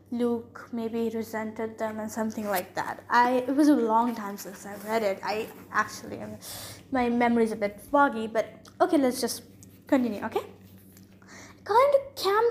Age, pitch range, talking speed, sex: 10-29, 235-320 Hz, 175 wpm, female